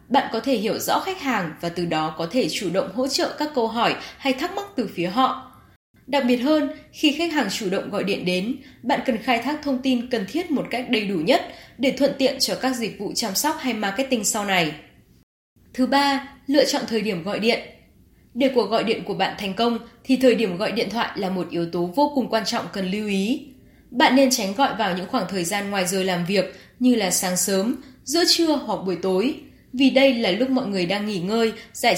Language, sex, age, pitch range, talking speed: Vietnamese, female, 10-29, 200-270 Hz, 240 wpm